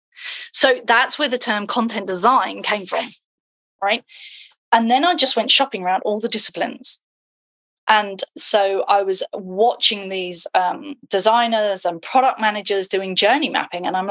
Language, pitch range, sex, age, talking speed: English, 195-255 Hz, female, 30-49, 155 wpm